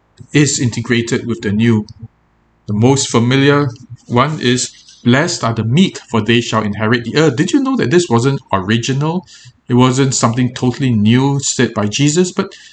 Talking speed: 170 wpm